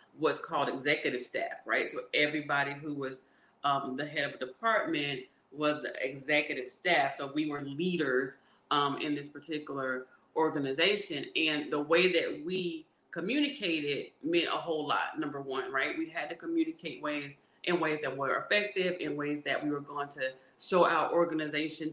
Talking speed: 165 wpm